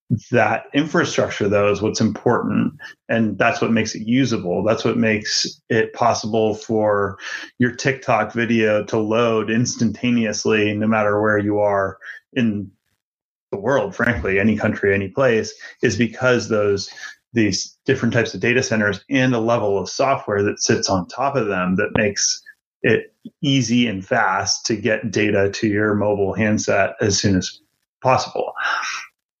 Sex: male